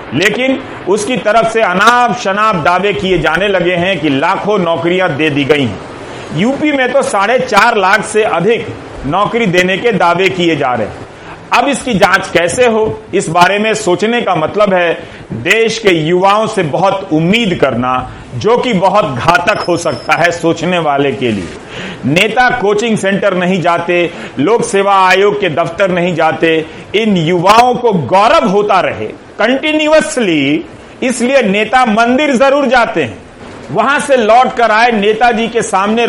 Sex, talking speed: male, 160 wpm